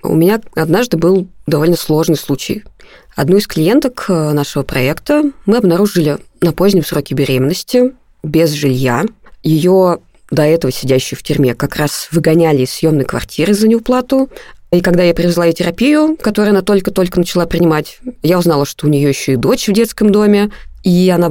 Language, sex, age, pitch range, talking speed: Russian, female, 20-39, 155-205 Hz, 165 wpm